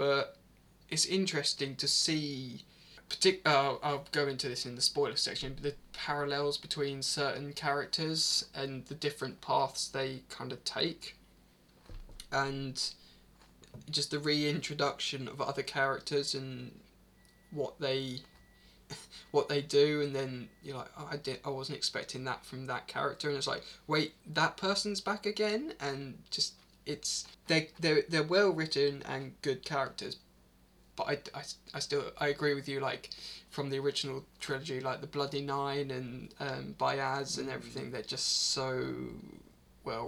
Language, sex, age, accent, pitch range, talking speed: English, male, 20-39, British, 135-150 Hz, 150 wpm